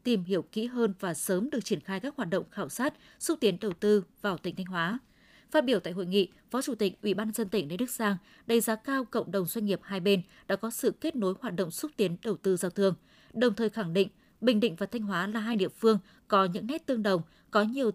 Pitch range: 195-240 Hz